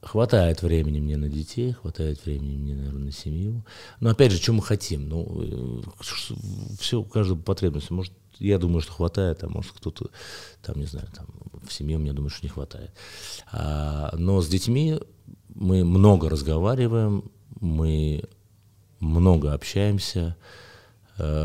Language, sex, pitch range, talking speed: Russian, male, 75-100 Hz, 135 wpm